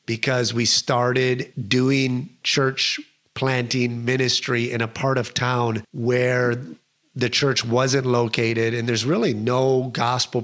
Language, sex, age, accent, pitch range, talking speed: English, male, 30-49, American, 115-130 Hz, 125 wpm